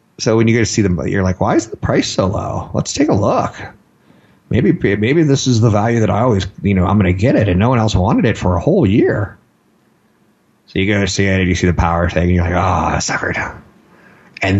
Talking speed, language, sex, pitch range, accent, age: 265 wpm, English, male, 90-110 Hz, American, 30-49